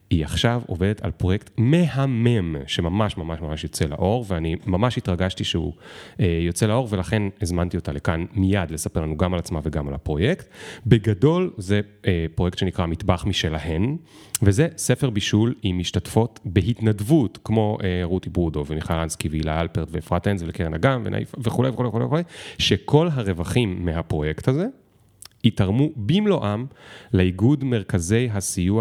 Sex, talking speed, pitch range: male, 130 wpm, 90-120 Hz